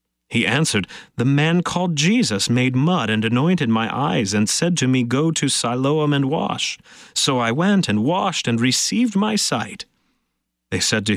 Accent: American